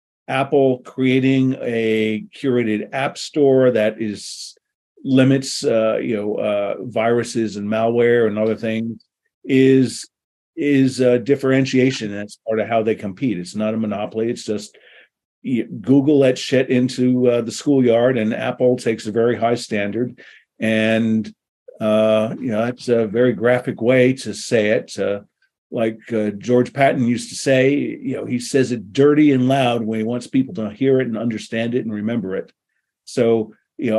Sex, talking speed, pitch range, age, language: male, 165 wpm, 110-130 Hz, 50-69, English